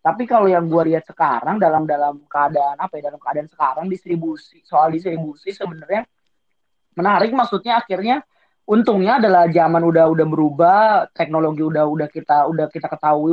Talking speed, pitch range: 155 wpm, 155-180 Hz